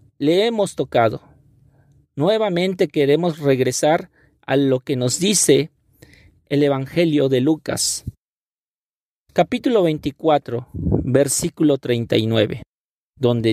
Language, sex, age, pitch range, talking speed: Spanish, male, 50-69, 125-170 Hz, 90 wpm